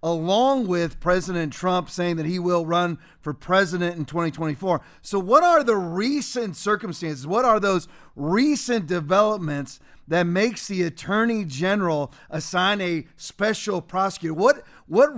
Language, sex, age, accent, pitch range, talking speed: English, male, 40-59, American, 170-220 Hz, 140 wpm